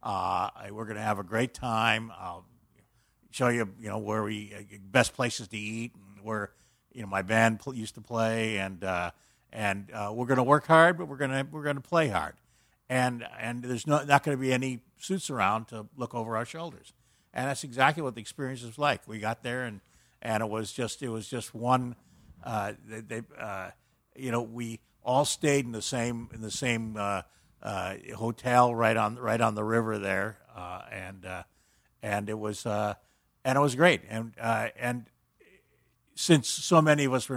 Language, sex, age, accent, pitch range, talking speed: English, male, 50-69, American, 110-130 Hz, 200 wpm